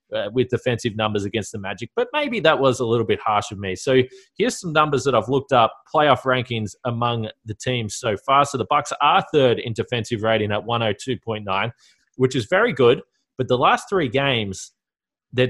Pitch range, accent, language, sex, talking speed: 115-145 Hz, Australian, English, male, 200 wpm